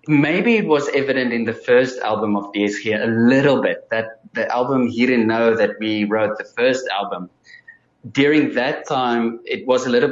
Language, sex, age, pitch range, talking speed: English, male, 20-39, 115-140 Hz, 195 wpm